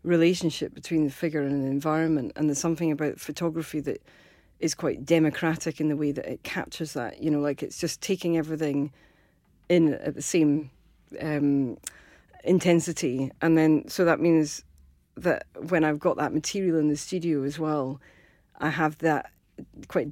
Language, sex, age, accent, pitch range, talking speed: English, female, 40-59, British, 145-165 Hz, 165 wpm